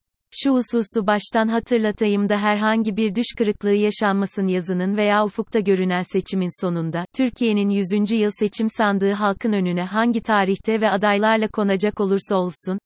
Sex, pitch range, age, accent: female, 190-225 Hz, 40-59, native